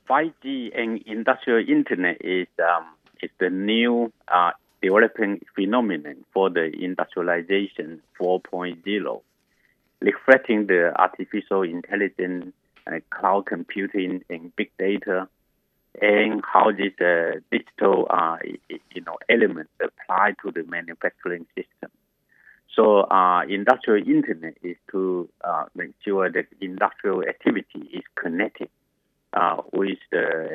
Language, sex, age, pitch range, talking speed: English, male, 50-69, 90-105 Hz, 110 wpm